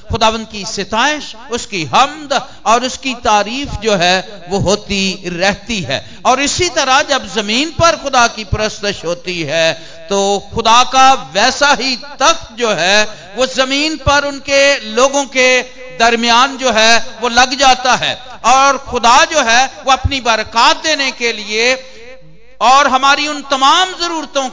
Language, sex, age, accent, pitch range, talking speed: Hindi, male, 50-69, native, 160-260 Hz, 150 wpm